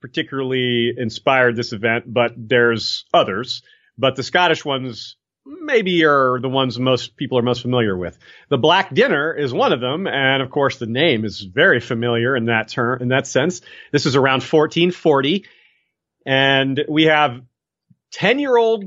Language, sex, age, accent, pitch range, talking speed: English, male, 40-59, American, 120-160 Hz, 160 wpm